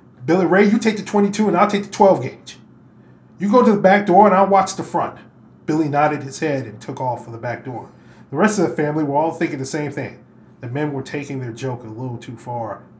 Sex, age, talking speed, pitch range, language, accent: male, 20-39, 255 wpm, 125-170 Hz, English, American